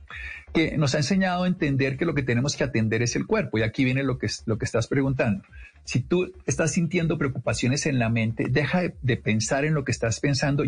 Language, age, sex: Spanish, 50-69, male